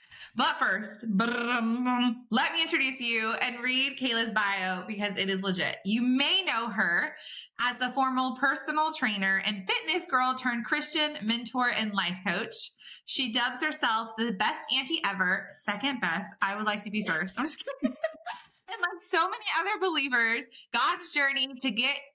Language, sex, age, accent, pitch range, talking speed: English, female, 20-39, American, 225-295 Hz, 165 wpm